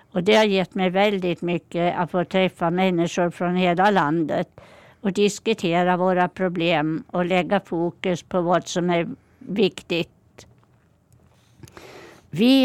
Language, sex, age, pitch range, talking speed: Swedish, female, 60-79, 180-210 Hz, 130 wpm